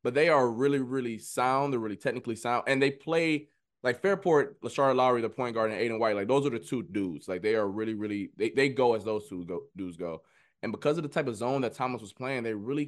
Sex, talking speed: male, 265 wpm